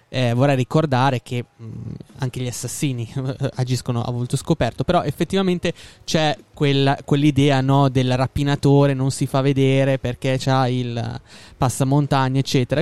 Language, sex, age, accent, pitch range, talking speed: Italian, male, 20-39, native, 130-160 Hz, 140 wpm